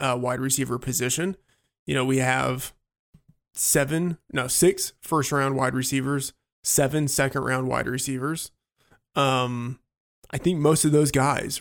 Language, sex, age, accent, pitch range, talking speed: English, male, 20-39, American, 125-150 Hz, 140 wpm